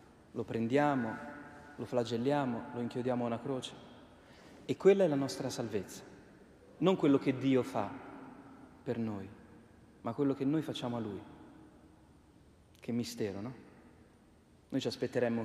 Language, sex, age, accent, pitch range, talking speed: Italian, male, 30-49, native, 115-140 Hz, 135 wpm